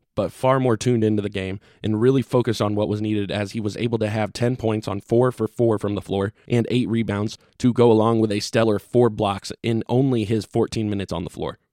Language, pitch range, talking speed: English, 105-115 Hz, 245 wpm